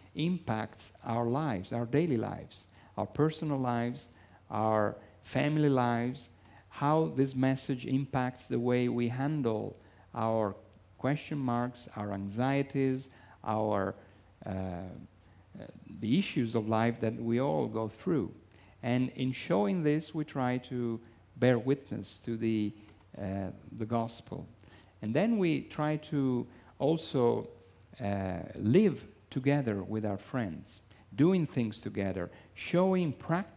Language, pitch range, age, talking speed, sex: English, 105-140 Hz, 50-69, 120 wpm, male